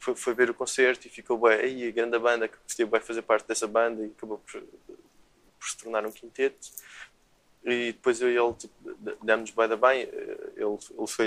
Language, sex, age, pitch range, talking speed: Portuguese, male, 20-39, 105-125 Hz, 190 wpm